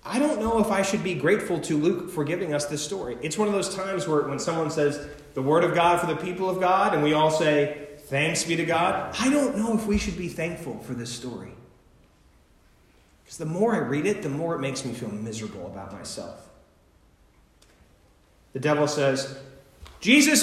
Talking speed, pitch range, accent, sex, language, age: 210 wpm, 145-205 Hz, American, male, English, 30-49